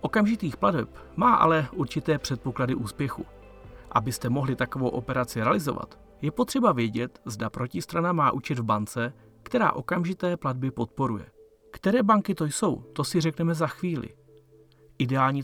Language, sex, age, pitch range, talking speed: Czech, male, 40-59, 120-160 Hz, 135 wpm